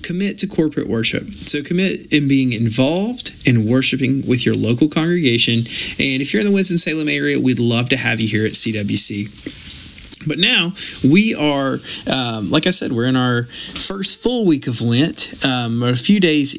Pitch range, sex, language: 115-155 Hz, male, English